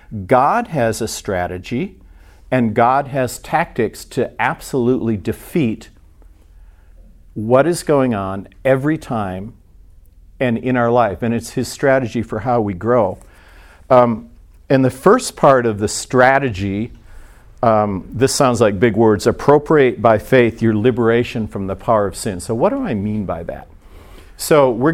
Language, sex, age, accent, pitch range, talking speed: English, male, 50-69, American, 95-125 Hz, 150 wpm